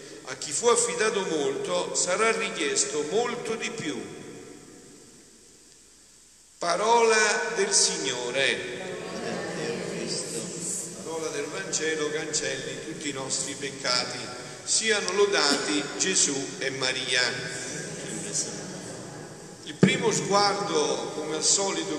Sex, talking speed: male, 85 wpm